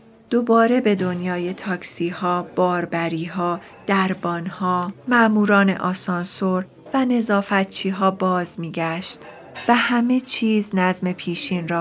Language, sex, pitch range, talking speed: Persian, female, 170-200 Hz, 105 wpm